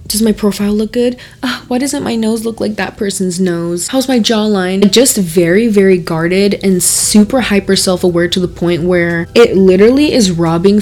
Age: 20-39